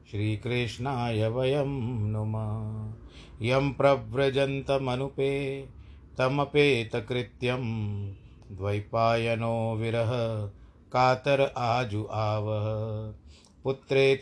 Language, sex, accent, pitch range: Hindi, male, native, 100-120 Hz